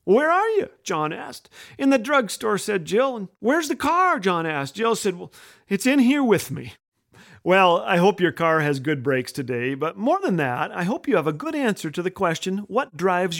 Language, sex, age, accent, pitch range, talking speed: English, male, 40-59, American, 145-215 Hz, 220 wpm